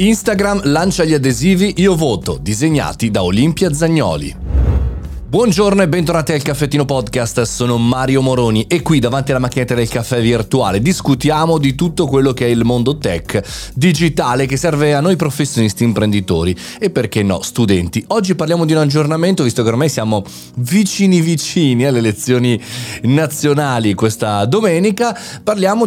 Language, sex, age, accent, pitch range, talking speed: Italian, male, 30-49, native, 105-155 Hz, 150 wpm